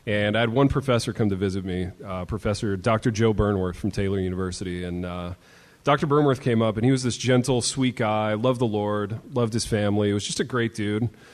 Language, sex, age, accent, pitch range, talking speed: English, male, 30-49, American, 95-120 Hz, 220 wpm